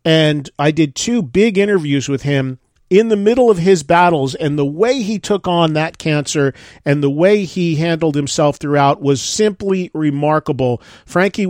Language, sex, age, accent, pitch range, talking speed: English, male, 40-59, American, 140-170 Hz, 170 wpm